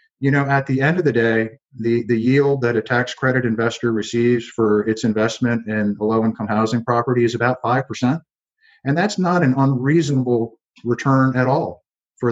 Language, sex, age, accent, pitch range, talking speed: English, male, 50-69, American, 110-140 Hz, 180 wpm